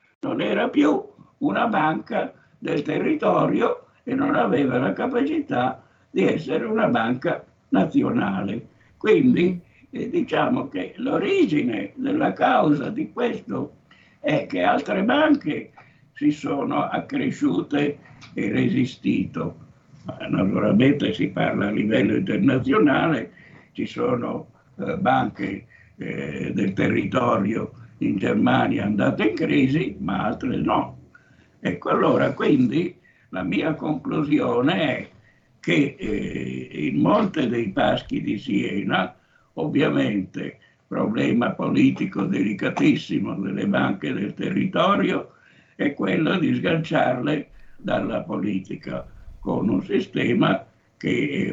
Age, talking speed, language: 60-79, 105 wpm, Italian